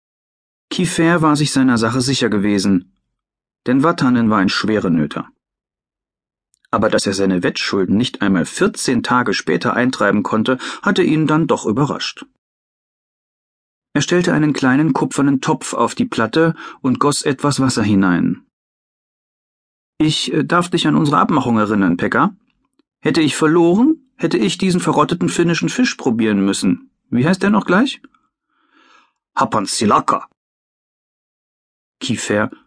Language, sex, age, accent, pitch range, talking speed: German, male, 40-59, German, 115-180 Hz, 125 wpm